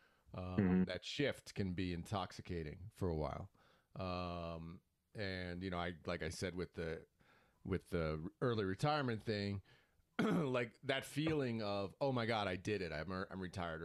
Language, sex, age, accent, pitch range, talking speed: English, male, 30-49, American, 85-110 Hz, 160 wpm